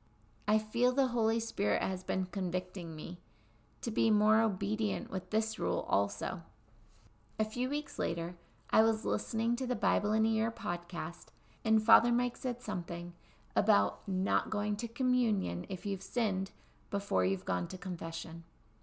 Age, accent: 30-49, American